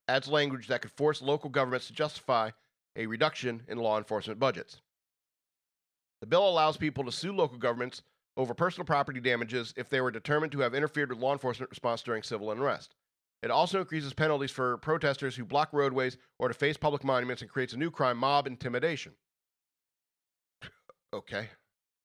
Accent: American